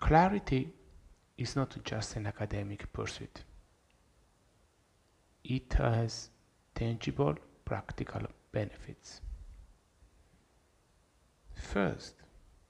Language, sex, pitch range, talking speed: English, male, 85-115 Hz, 60 wpm